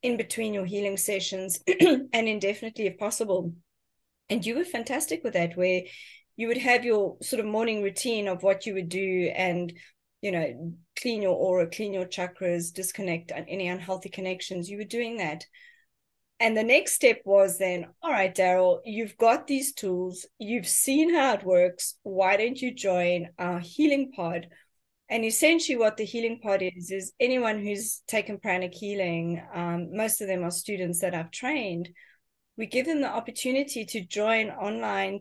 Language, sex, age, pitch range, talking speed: English, female, 30-49, 180-225 Hz, 170 wpm